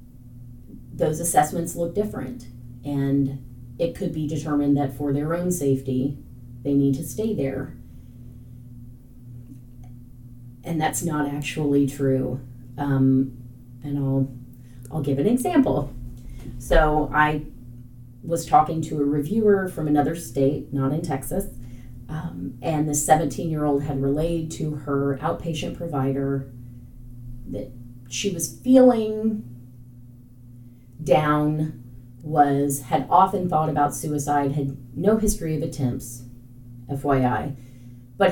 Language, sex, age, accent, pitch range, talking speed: English, female, 30-49, American, 120-150 Hz, 115 wpm